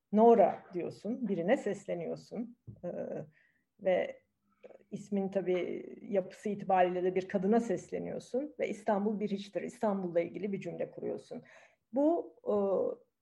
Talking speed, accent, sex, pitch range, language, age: 115 wpm, native, female, 185-245 Hz, Turkish, 50-69